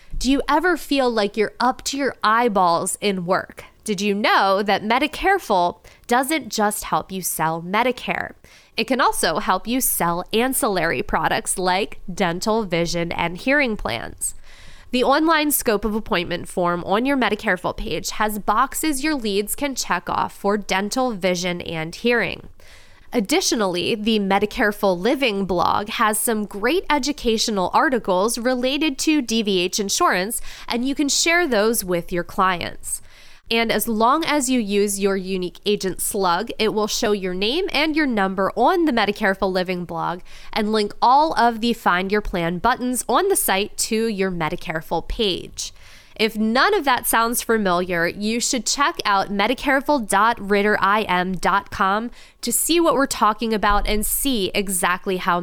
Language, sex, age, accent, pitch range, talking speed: English, female, 20-39, American, 185-245 Hz, 155 wpm